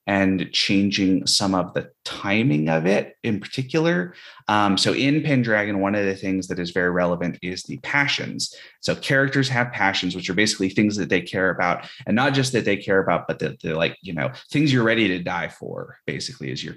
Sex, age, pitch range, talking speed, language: male, 20-39, 90-110 Hz, 210 wpm, English